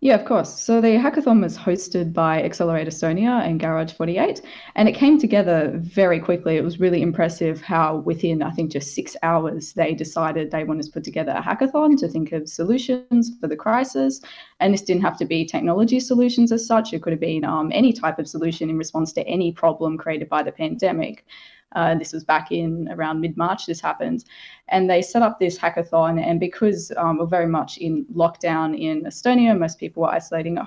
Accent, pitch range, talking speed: Australian, 160-210 Hz, 205 wpm